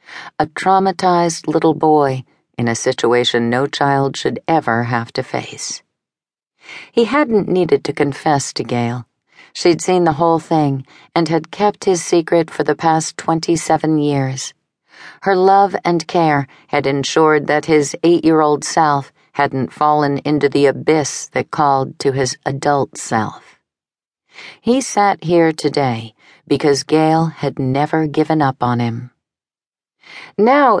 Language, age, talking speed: English, 50-69, 135 wpm